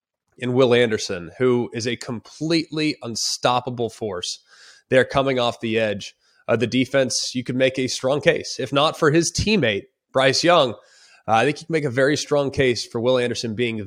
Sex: male